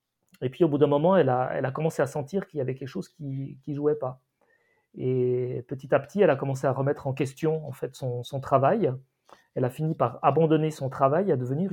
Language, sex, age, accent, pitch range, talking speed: French, male, 40-59, French, 130-165 Hz, 240 wpm